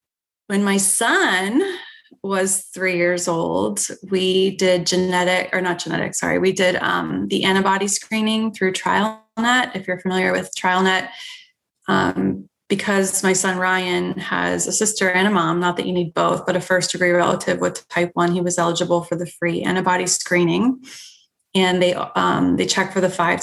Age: 20-39